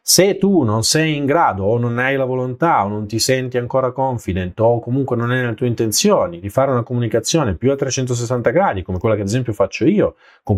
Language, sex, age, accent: Italian, male, 30-49, native